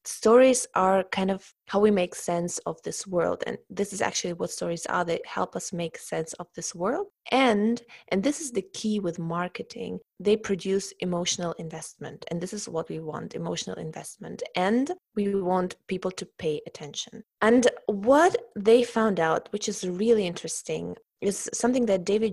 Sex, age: female, 20-39